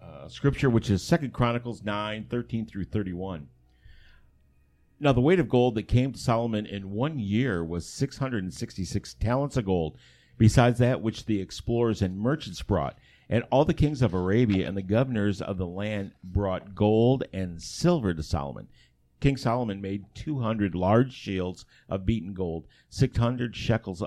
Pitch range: 90-115 Hz